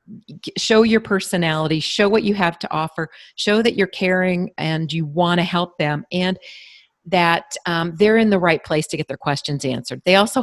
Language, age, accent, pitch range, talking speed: English, 40-59, American, 155-205 Hz, 195 wpm